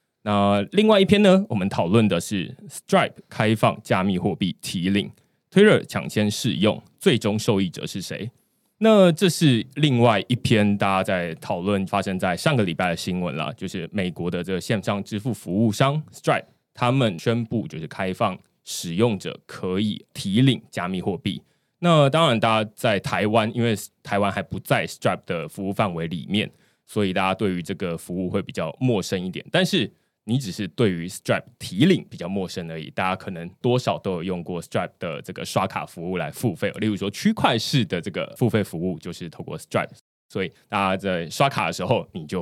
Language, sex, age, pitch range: Chinese, male, 20-39, 95-125 Hz